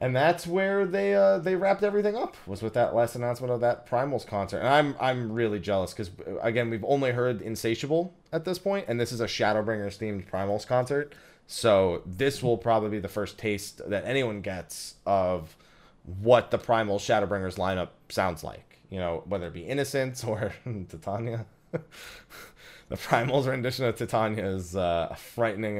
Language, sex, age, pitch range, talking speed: English, male, 20-39, 100-155 Hz, 170 wpm